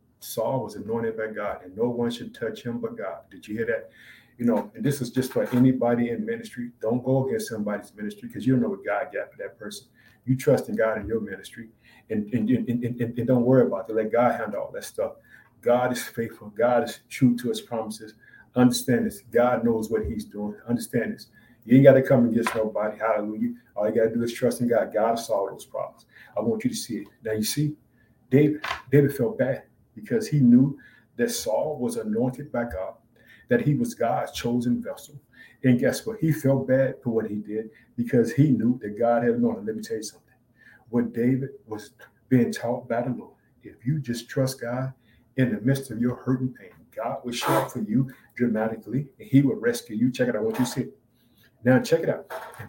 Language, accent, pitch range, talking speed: English, American, 115-140 Hz, 225 wpm